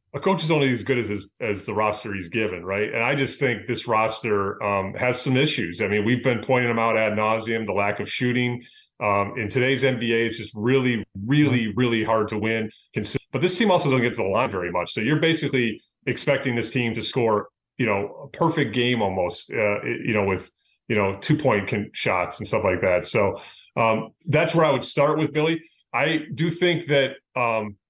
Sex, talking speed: male, 215 wpm